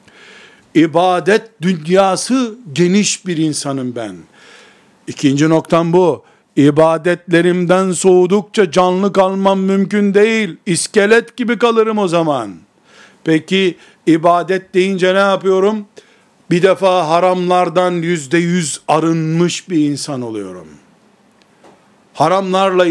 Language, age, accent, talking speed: Turkish, 60-79, native, 90 wpm